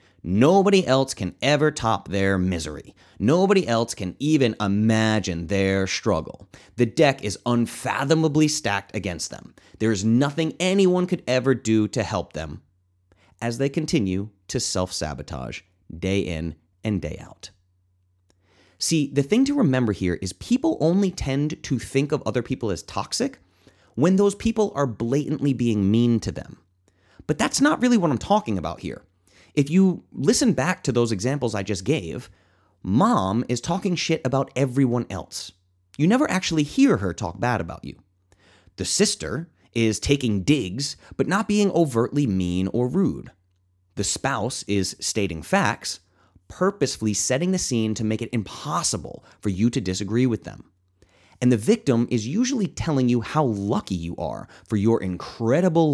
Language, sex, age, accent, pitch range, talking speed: English, male, 30-49, American, 95-145 Hz, 160 wpm